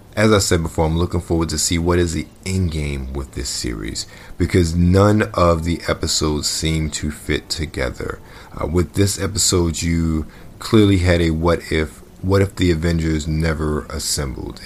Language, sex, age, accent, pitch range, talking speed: English, male, 40-59, American, 75-95 Hz, 170 wpm